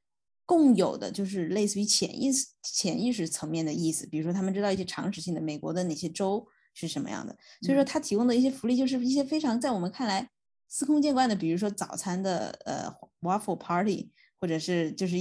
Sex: female